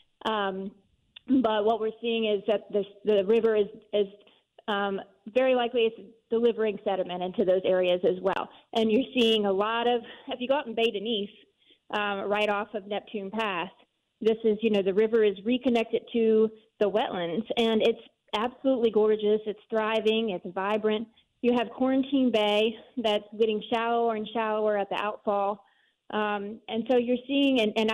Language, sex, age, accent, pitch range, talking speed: English, female, 30-49, American, 210-245 Hz, 170 wpm